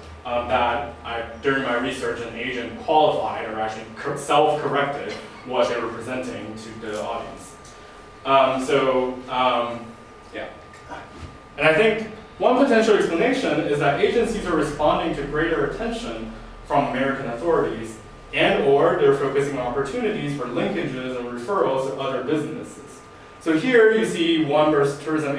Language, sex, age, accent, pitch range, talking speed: English, male, 20-39, American, 125-165 Hz, 140 wpm